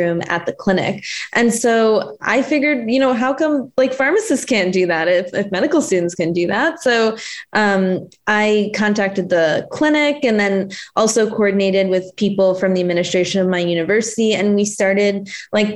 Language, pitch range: English, 185-210 Hz